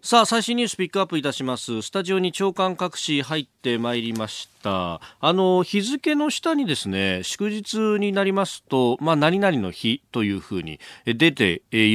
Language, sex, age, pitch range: Japanese, male, 40-59, 110-165 Hz